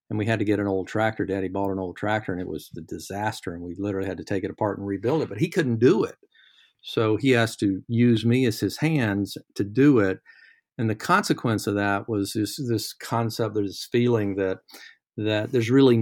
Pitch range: 100-125 Hz